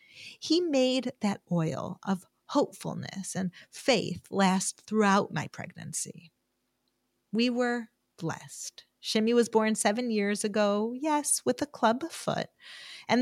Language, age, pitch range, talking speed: English, 30-49, 185-265 Hz, 125 wpm